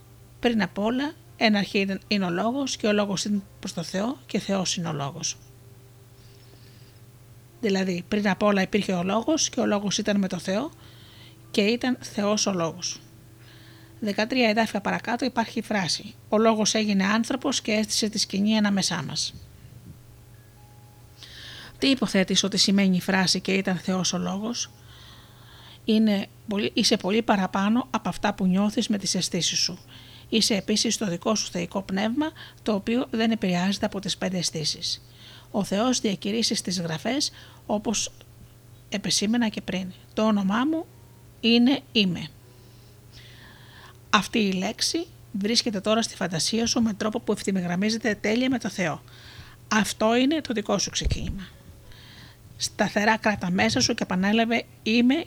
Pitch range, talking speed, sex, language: 155-220 Hz, 155 wpm, female, Greek